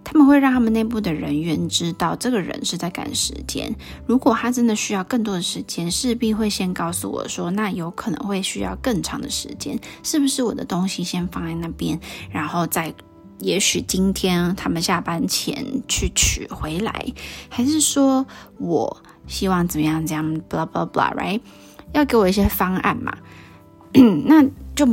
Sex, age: female, 20-39